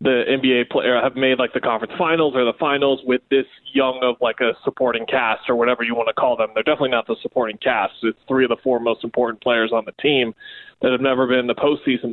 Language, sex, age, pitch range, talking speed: English, male, 20-39, 120-145 Hz, 250 wpm